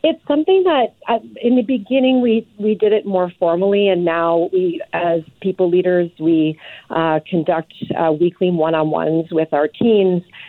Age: 40-59